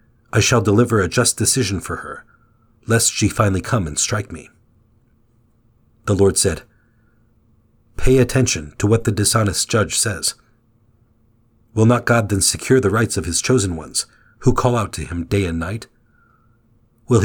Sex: male